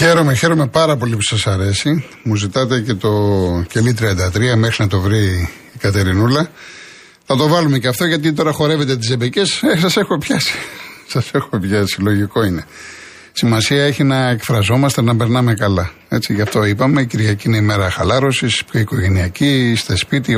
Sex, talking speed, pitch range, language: male, 170 wpm, 105-135 Hz, Greek